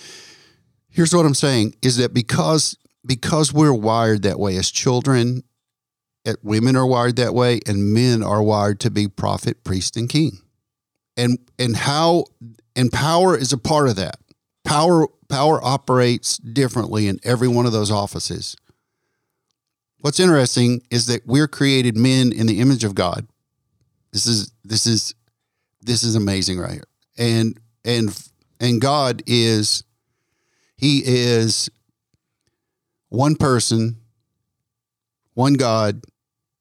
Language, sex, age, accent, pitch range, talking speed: English, male, 50-69, American, 110-130 Hz, 135 wpm